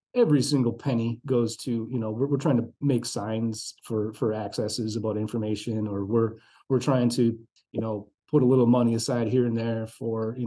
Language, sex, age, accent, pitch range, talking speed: English, male, 30-49, American, 110-130 Hz, 200 wpm